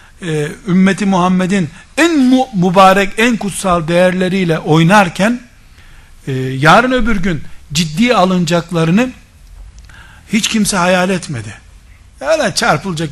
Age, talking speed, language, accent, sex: 60-79, 100 wpm, Turkish, native, male